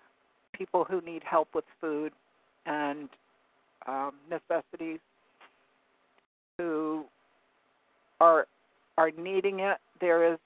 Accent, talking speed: American, 90 wpm